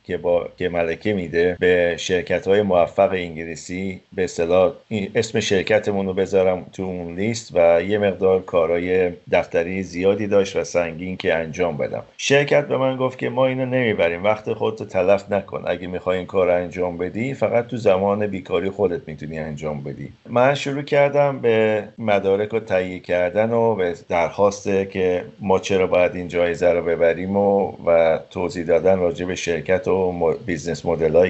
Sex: male